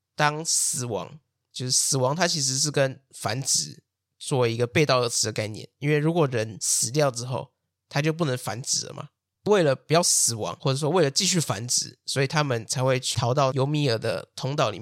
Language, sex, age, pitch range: Chinese, male, 20-39, 125-155 Hz